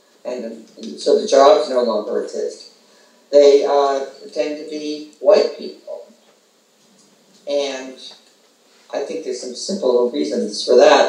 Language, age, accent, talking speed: Swedish, 50-69, American, 125 wpm